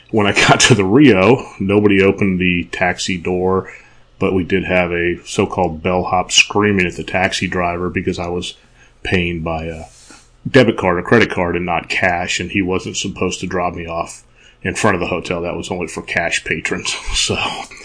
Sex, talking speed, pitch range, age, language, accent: male, 190 wpm, 90-100 Hz, 30-49, English, American